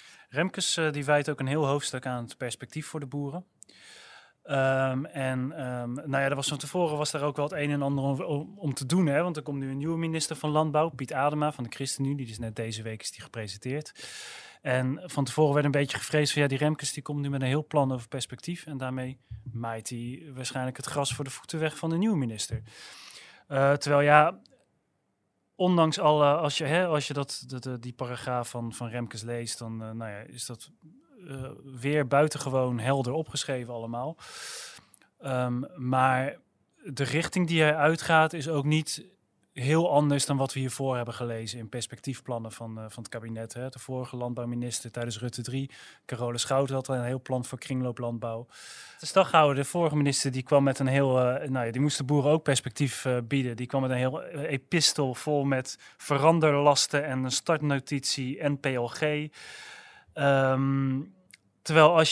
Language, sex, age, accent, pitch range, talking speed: Dutch, male, 30-49, Dutch, 125-150 Hz, 180 wpm